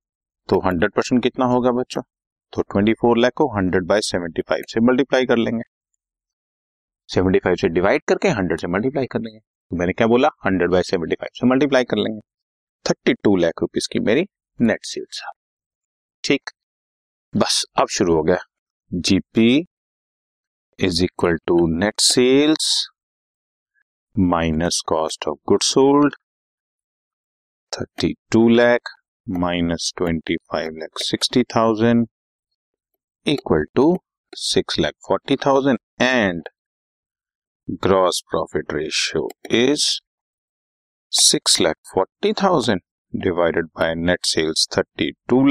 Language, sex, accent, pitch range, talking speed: Hindi, male, native, 85-135 Hz, 110 wpm